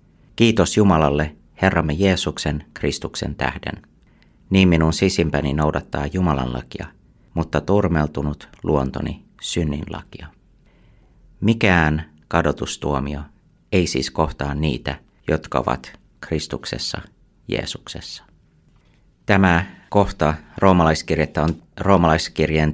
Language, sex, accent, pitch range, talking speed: Finnish, male, native, 75-85 Hz, 85 wpm